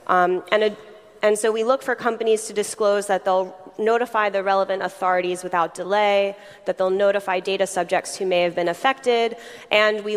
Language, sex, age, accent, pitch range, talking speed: English, female, 20-39, American, 185-215 Hz, 185 wpm